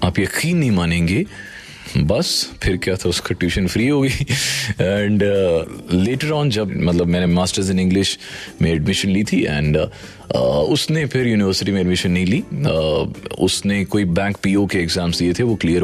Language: Hindi